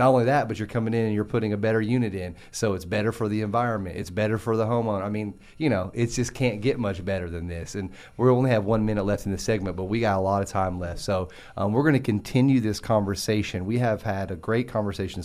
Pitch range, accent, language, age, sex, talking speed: 100-120 Hz, American, English, 30-49, male, 270 wpm